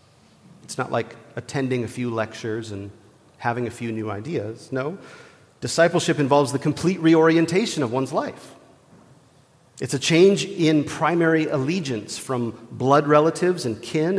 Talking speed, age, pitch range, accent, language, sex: 140 wpm, 40-59, 115-145 Hz, American, English, male